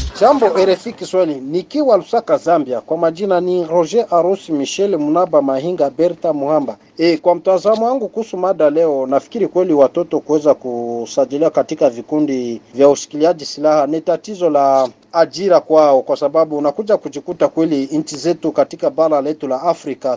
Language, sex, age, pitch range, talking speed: Swahili, male, 40-59, 145-185 Hz, 145 wpm